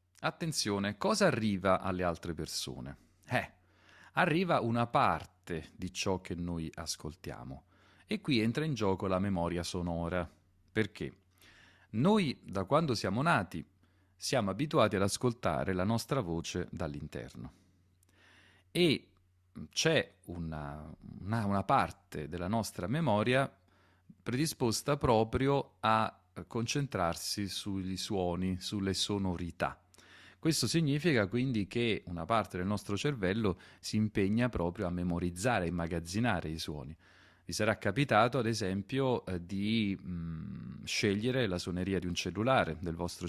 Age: 40-59